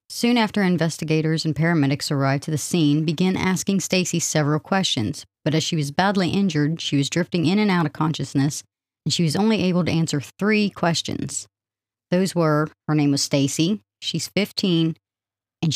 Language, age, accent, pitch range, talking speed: English, 40-59, American, 145-195 Hz, 175 wpm